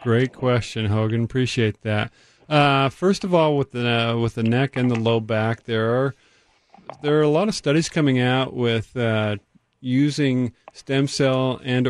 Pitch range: 110-130 Hz